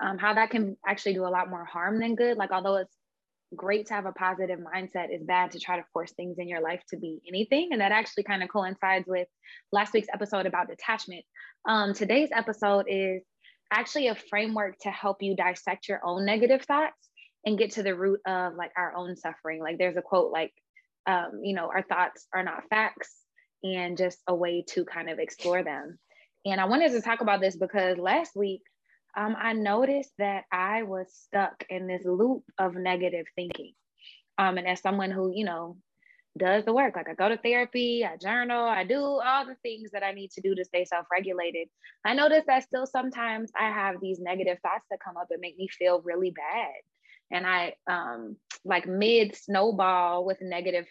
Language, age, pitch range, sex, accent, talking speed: English, 20-39, 180-220 Hz, female, American, 205 wpm